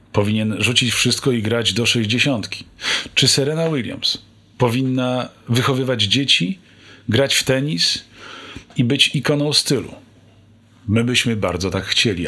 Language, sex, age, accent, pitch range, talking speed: Polish, male, 40-59, native, 100-120 Hz, 120 wpm